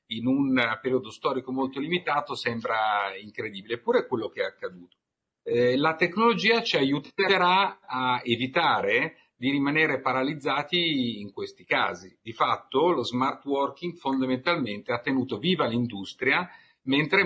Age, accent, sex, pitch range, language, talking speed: 50-69, native, male, 120-170 Hz, Italian, 130 wpm